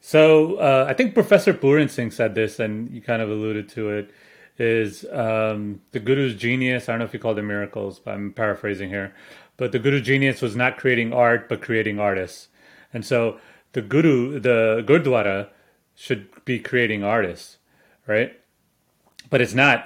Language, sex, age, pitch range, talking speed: English, male, 30-49, 110-135 Hz, 175 wpm